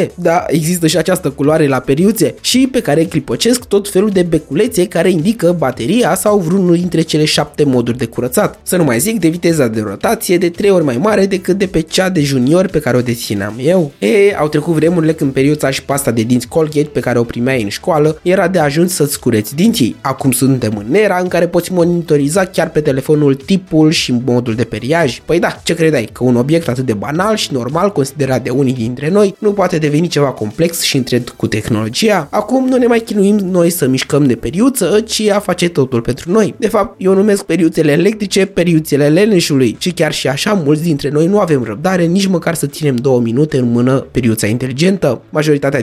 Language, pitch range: Romanian, 135-185 Hz